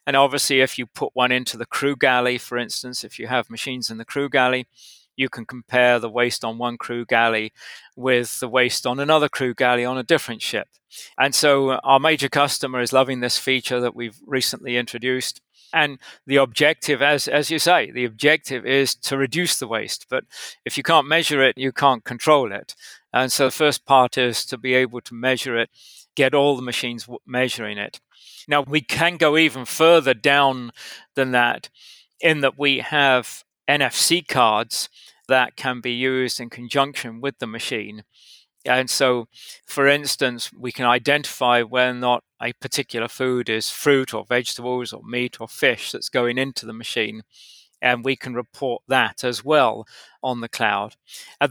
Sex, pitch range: male, 120-140 Hz